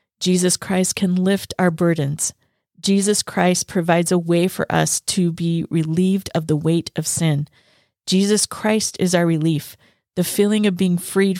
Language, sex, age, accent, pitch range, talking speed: English, female, 40-59, American, 165-195 Hz, 165 wpm